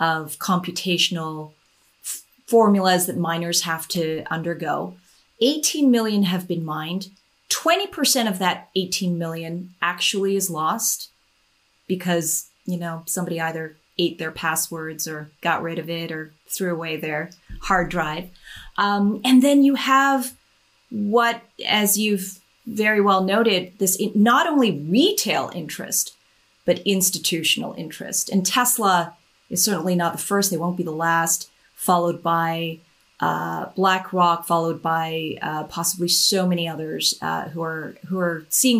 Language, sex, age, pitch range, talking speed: English, female, 30-49, 165-200 Hz, 140 wpm